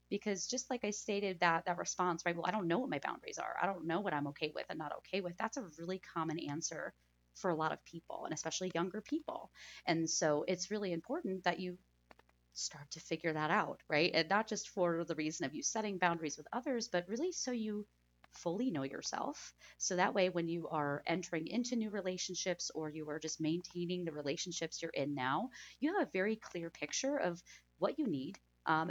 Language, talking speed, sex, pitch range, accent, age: English, 220 wpm, female, 160-205 Hz, American, 30-49